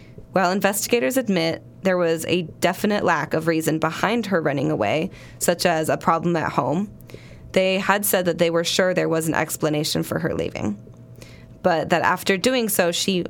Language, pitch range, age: English, 160-195 Hz, 10-29